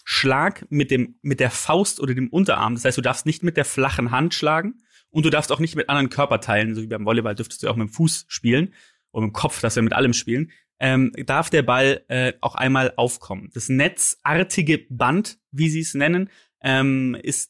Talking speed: 220 wpm